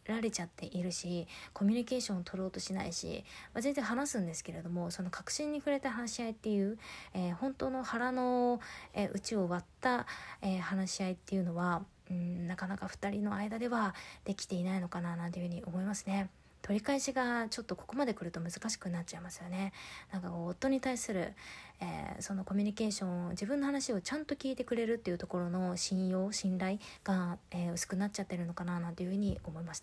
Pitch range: 185-215 Hz